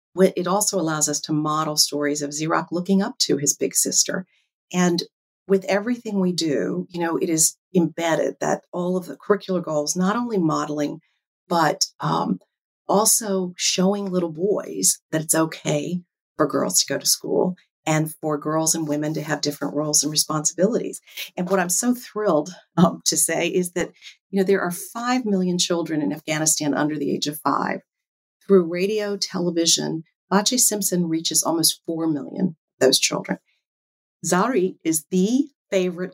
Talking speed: 165 wpm